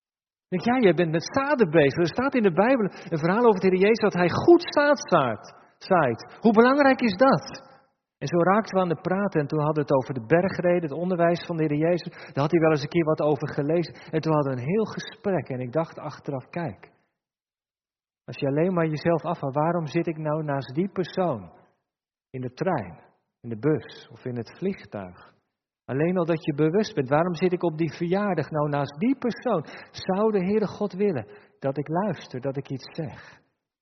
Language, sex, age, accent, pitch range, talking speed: German, male, 50-69, Dutch, 135-185 Hz, 215 wpm